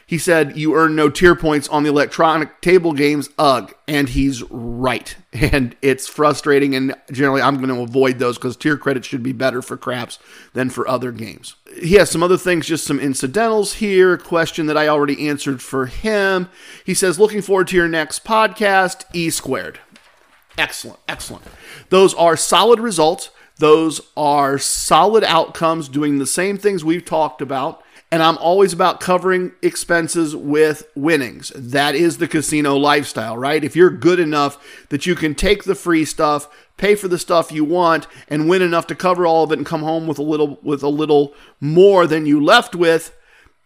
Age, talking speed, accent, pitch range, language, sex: 50-69, 185 wpm, American, 145-180 Hz, English, male